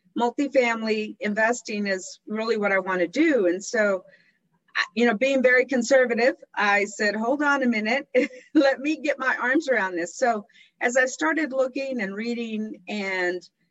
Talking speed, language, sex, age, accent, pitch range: 160 wpm, English, female, 40-59, American, 190-245 Hz